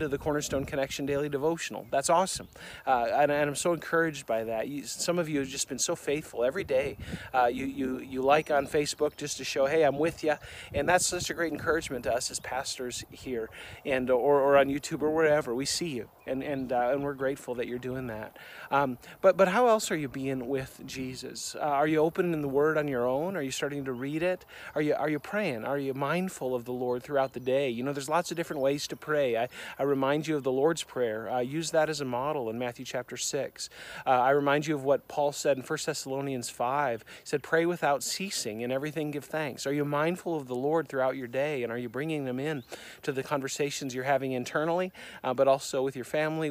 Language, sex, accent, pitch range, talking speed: English, male, American, 130-155 Hz, 240 wpm